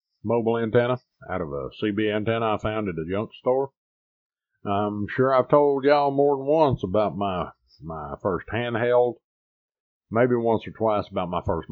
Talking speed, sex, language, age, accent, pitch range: 170 wpm, male, English, 50-69, American, 95-115 Hz